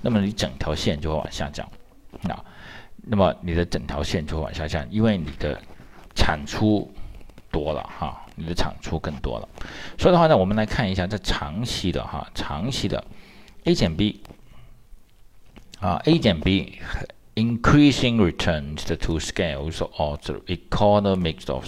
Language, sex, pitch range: Chinese, male, 80-105 Hz